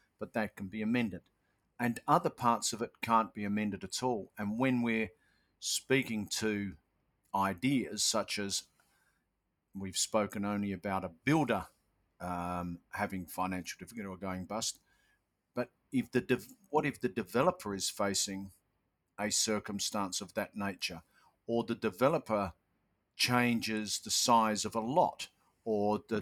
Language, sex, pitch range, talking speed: English, male, 100-115 Hz, 140 wpm